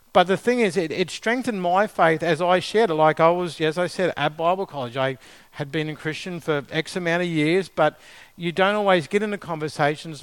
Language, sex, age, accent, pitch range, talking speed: English, male, 50-69, Australian, 150-190 Hz, 230 wpm